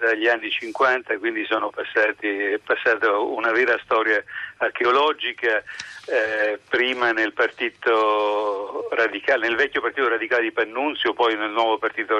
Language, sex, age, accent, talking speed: Italian, male, 60-79, native, 125 wpm